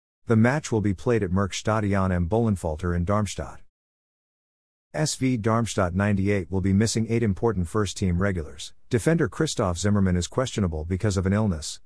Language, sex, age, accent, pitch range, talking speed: English, male, 50-69, American, 90-115 Hz, 155 wpm